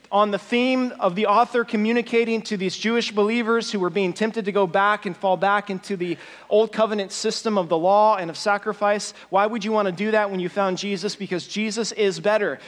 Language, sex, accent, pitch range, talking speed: English, male, American, 195-230 Hz, 220 wpm